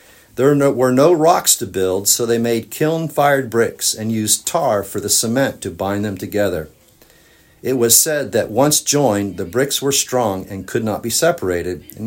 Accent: American